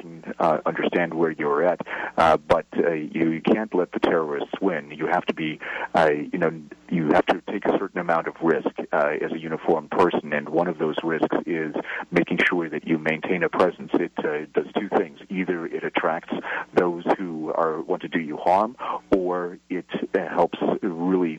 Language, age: English, 40-59